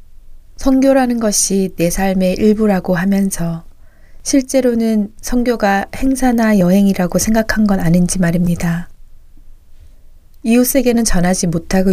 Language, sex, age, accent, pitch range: Korean, female, 20-39, native, 165-210 Hz